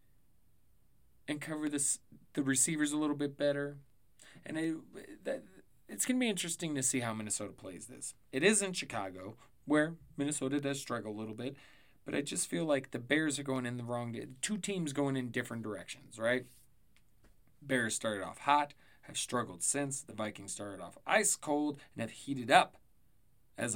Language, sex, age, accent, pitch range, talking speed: English, male, 30-49, American, 115-140 Hz, 180 wpm